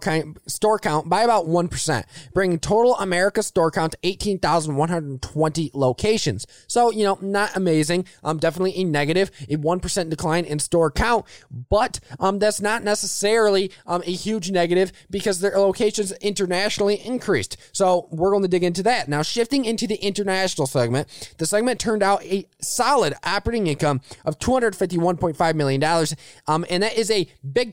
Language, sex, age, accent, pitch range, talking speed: English, male, 20-39, American, 165-215 Hz, 180 wpm